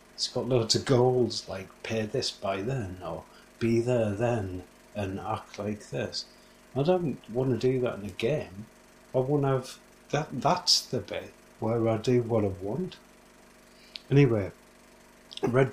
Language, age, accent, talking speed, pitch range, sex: English, 30-49, British, 155 wpm, 95-125 Hz, male